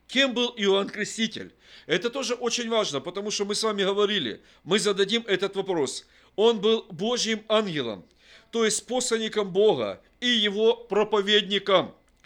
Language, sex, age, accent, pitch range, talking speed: Russian, male, 50-69, native, 195-230 Hz, 140 wpm